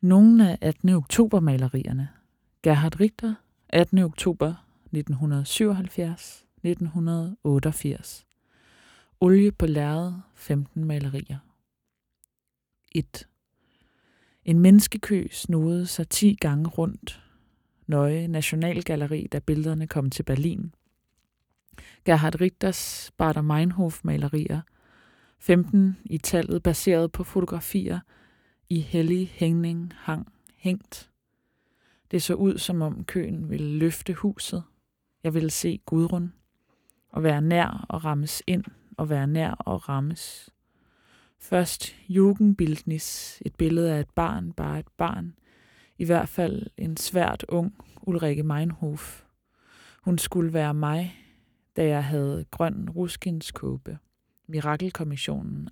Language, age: Danish, 20-39